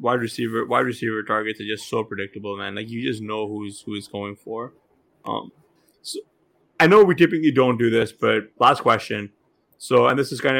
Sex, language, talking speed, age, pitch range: male, English, 205 wpm, 20-39, 115-140 Hz